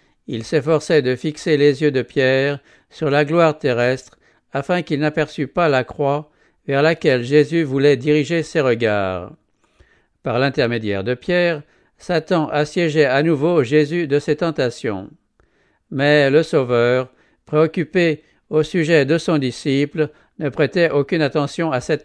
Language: English